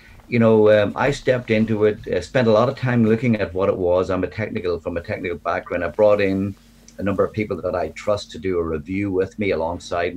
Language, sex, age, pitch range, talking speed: English, male, 50-69, 90-115 Hz, 250 wpm